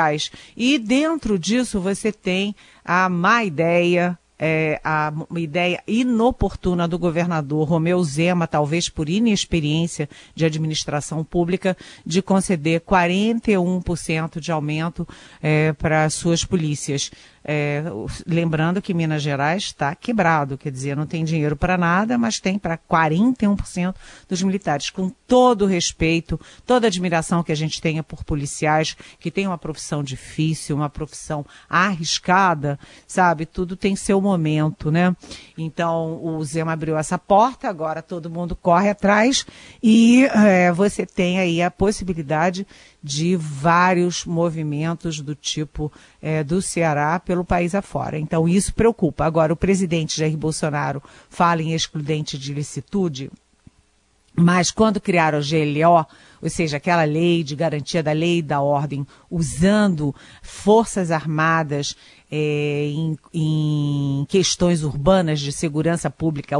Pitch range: 155-185 Hz